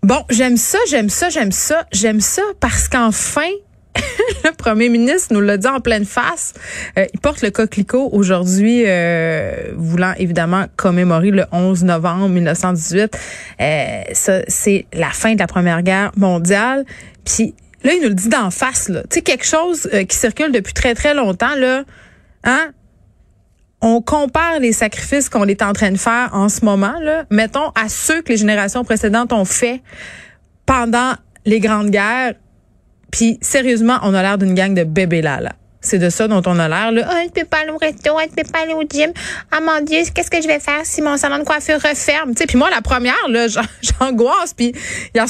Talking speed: 195 wpm